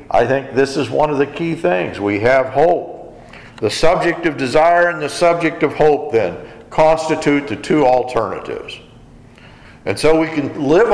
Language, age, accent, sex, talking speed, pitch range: English, 50-69, American, male, 170 wpm, 135-170 Hz